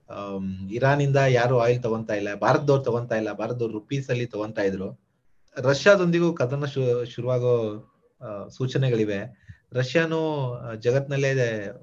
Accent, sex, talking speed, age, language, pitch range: native, male, 110 wpm, 30-49, Kannada, 115-150 Hz